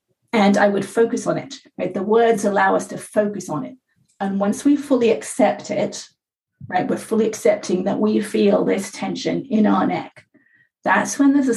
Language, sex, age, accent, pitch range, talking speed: English, female, 30-49, British, 205-245 Hz, 190 wpm